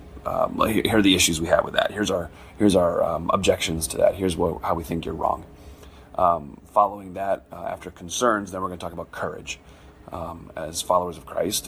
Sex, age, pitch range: male, 30-49, 80-90 Hz